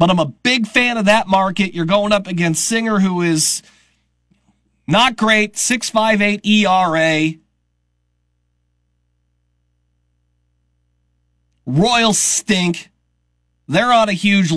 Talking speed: 105 wpm